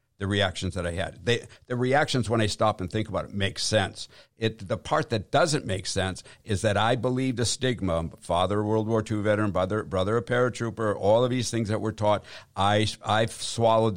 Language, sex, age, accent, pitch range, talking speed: English, male, 60-79, American, 105-125 Hz, 210 wpm